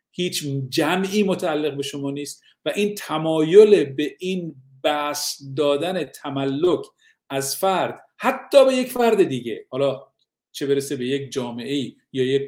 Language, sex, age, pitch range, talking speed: Persian, male, 50-69, 135-170 Hz, 140 wpm